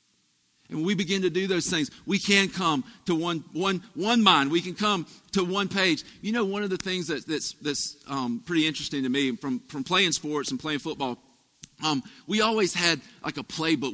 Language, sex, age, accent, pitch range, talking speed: English, male, 40-59, American, 135-190 Hz, 215 wpm